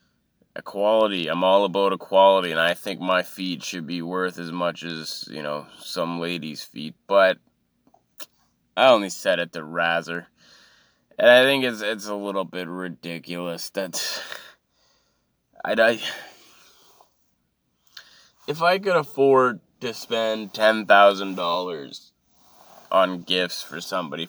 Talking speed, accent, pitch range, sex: 130 wpm, American, 85-110 Hz, male